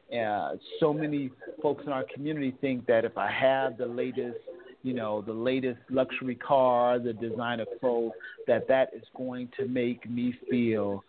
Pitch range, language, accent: 125-150 Hz, English, American